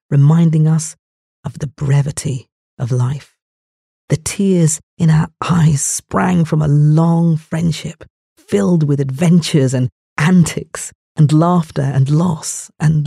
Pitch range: 135-165 Hz